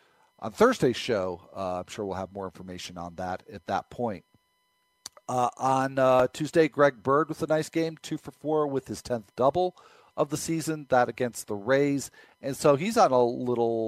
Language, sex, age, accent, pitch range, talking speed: English, male, 40-59, American, 115-150 Hz, 195 wpm